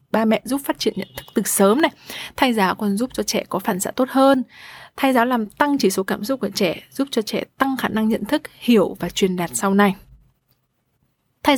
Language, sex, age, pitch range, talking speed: Vietnamese, female, 20-39, 195-245 Hz, 240 wpm